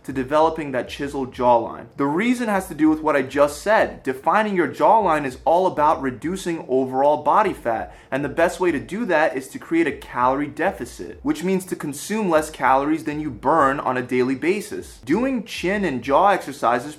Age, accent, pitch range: 20-39, American, 140-190 Hz